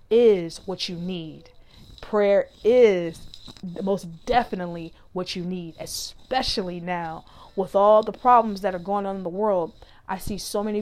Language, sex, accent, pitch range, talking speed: English, female, American, 180-195 Hz, 155 wpm